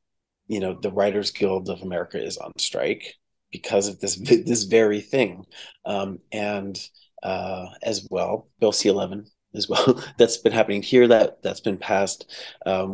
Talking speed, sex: 160 wpm, male